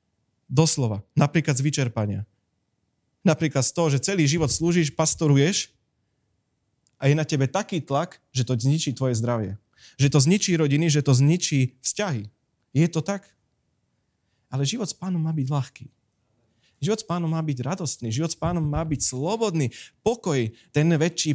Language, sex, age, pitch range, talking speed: Slovak, male, 30-49, 125-165 Hz, 155 wpm